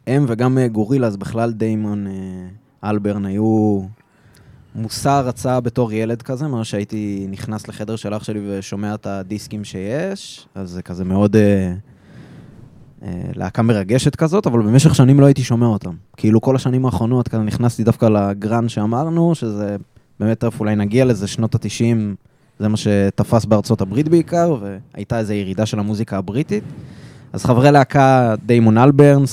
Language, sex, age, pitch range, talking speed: Hebrew, male, 20-39, 105-135 Hz, 150 wpm